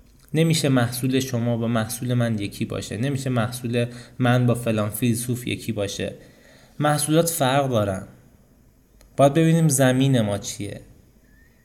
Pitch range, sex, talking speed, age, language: 115-135 Hz, male, 125 wpm, 20-39, Persian